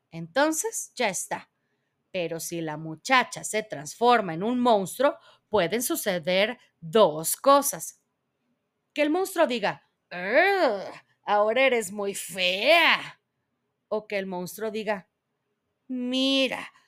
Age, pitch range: 30-49, 180-280 Hz